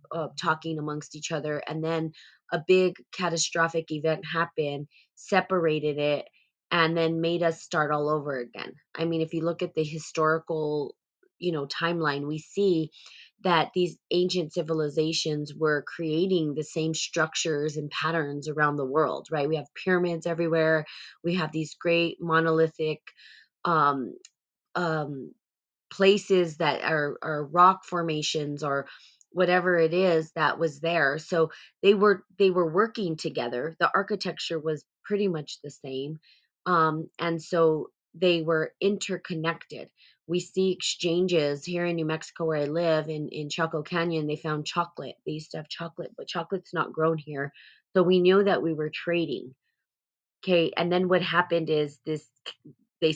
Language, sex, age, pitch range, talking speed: English, female, 20-39, 155-175 Hz, 155 wpm